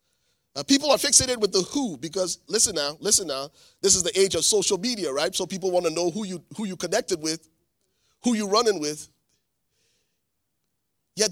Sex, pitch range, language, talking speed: male, 150-230 Hz, English, 190 wpm